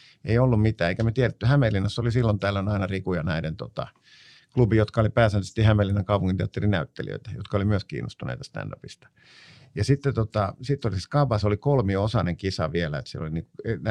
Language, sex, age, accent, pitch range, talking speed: Finnish, male, 50-69, native, 100-130 Hz, 165 wpm